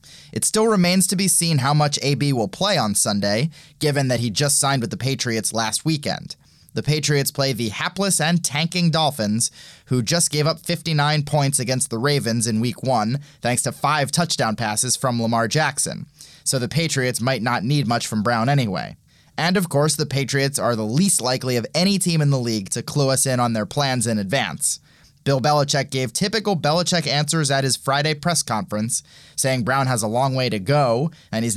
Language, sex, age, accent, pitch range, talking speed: English, male, 20-39, American, 120-150 Hz, 200 wpm